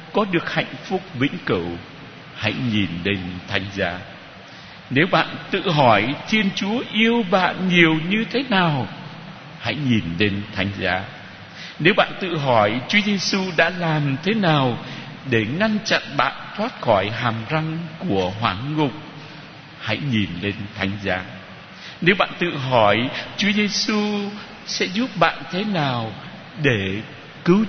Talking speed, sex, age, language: 145 wpm, male, 60-79, Vietnamese